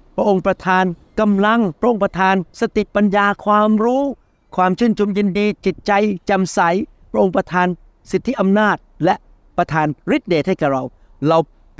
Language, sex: Thai, male